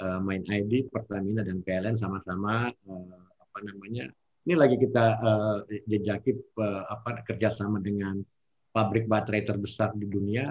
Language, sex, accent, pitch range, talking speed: Indonesian, male, native, 100-120 Hz, 125 wpm